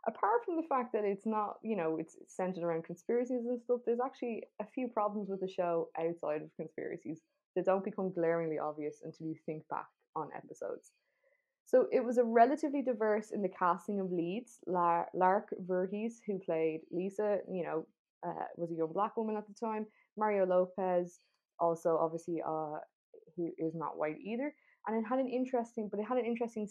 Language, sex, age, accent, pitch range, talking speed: English, female, 20-39, Irish, 175-225 Hz, 190 wpm